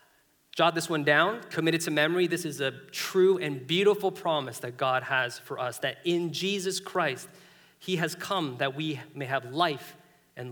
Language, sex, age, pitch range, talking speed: English, male, 30-49, 145-190 Hz, 175 wpm